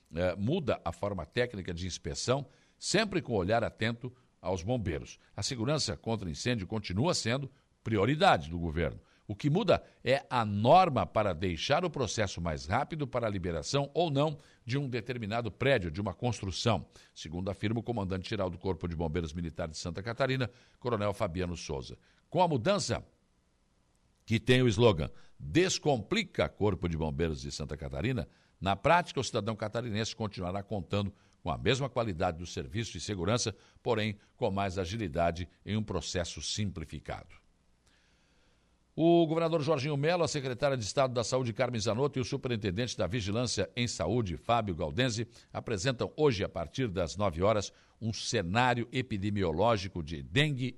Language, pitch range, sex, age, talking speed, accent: Portuguese, 90-125 Hz, male, 60-79, 155 wpm, Brazilian